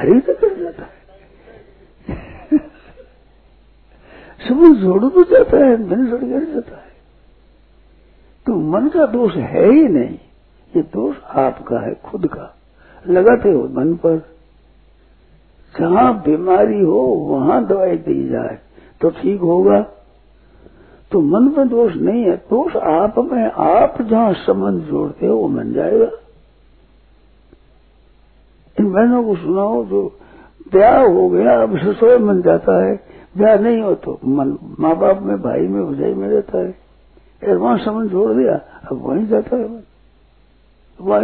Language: Hindi